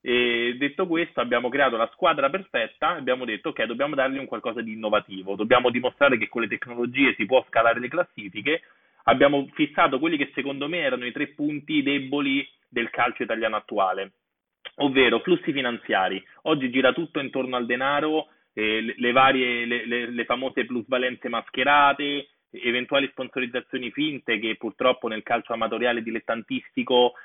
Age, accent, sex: 30-49, native, male